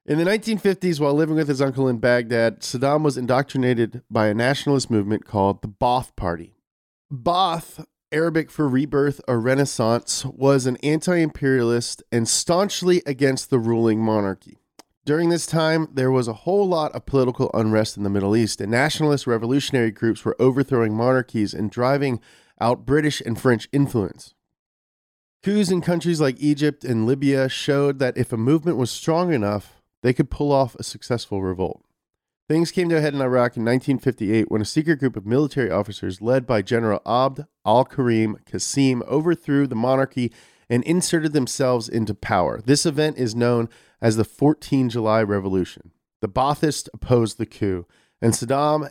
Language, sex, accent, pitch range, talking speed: English, male, American, 115-145 Hz, 165 wpm